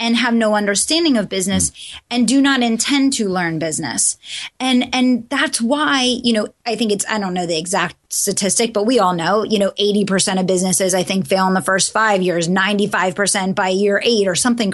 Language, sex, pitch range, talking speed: English, female, 195-245 Hz, 210 wpm